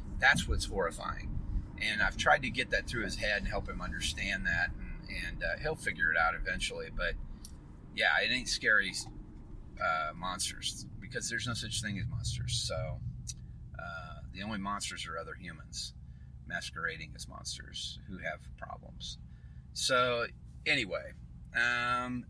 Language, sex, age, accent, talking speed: English, male, 40-59, American, 150 wpm